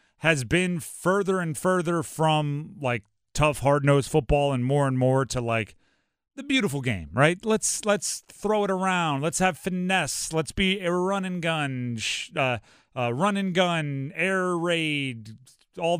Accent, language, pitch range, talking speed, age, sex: American, English, 130-180 Hz, 165 wpm, 30-49, male